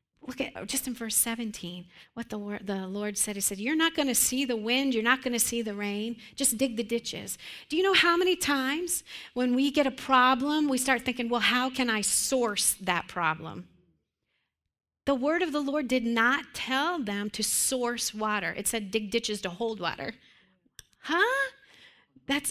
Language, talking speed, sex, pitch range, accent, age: English, 195 wpm, female, 215-275 Hz, American, 40-59